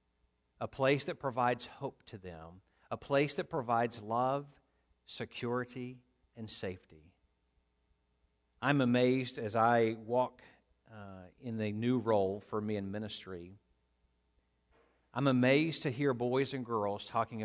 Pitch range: 85-125 Hz